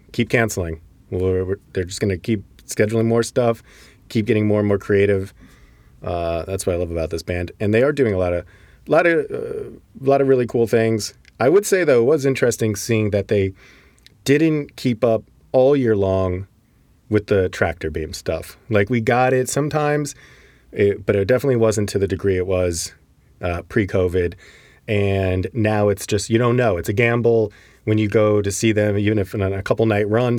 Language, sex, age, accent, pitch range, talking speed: English, male, 30-49, American, 95-115 Hz, 205 wpm